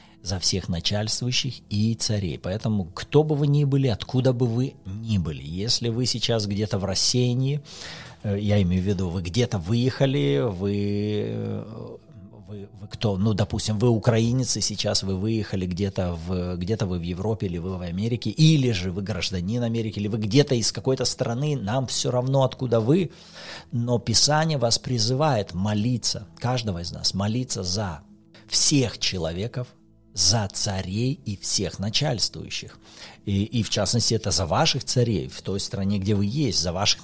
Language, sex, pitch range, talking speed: Russian, male, 95-125 Hz, 160 wpm